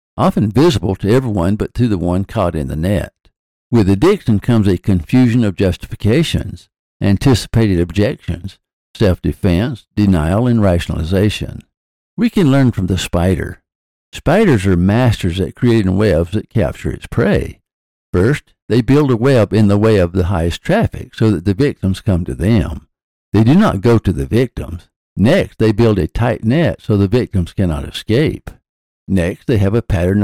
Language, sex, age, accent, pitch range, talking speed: English, male, 60-79, American, 90-115 Hz, 165 wpm